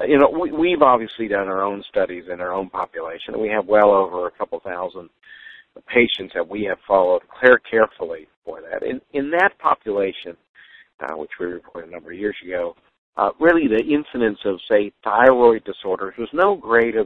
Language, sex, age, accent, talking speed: English, male, 50-69, American, 180 wpm